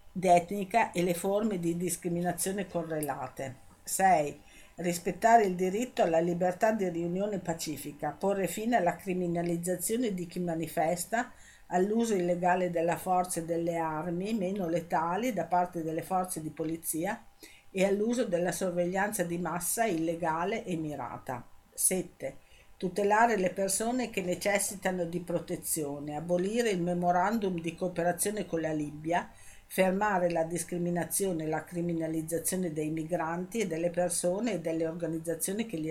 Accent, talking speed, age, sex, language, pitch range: native, 130 wpm, 50-69, female, Italian, 165-190 Hz